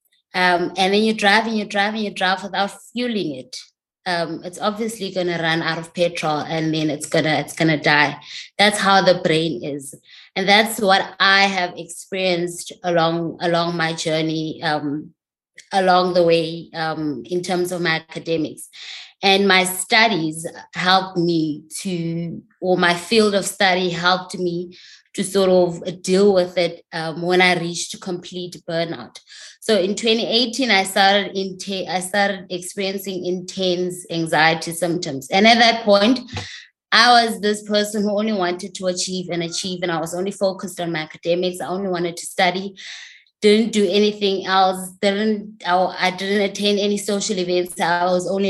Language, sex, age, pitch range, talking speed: English, female, 20-39, 170-200 Hz, 170 wpm